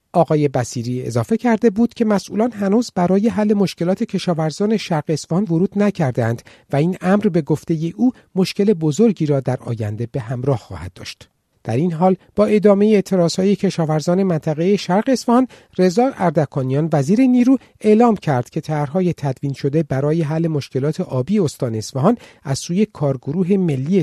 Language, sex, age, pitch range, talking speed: English, male, 50-69, 130-195 Hz, 160 wpm